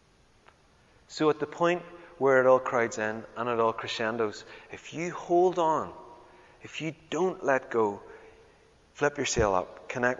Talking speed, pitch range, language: 160 wpm, 125-185 Hz, English